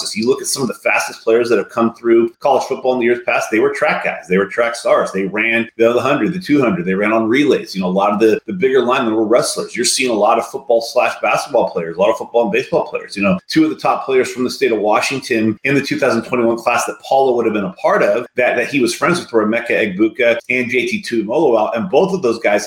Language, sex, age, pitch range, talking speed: English, male, 30-49, 115-155 Hz, 280 wpm